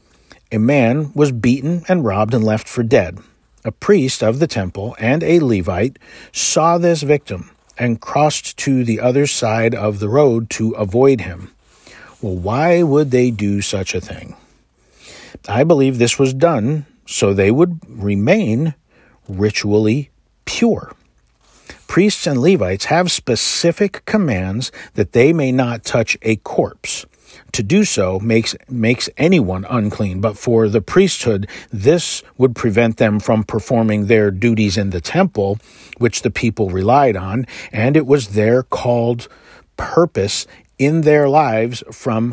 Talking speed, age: 145 wpm, 50-69